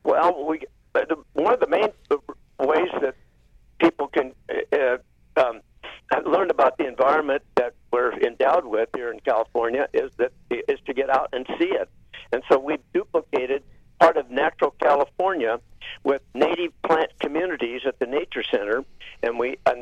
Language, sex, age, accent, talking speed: English, male, 60-79, American, 155 wpm